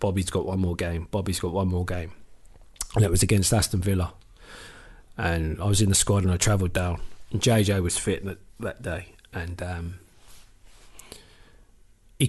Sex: male